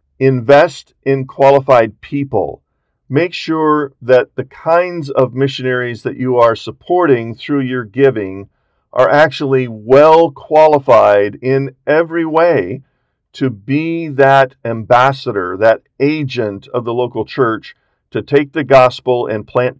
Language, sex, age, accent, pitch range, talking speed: English, male, 50-69, American, 120-145 Hz, 125 wpm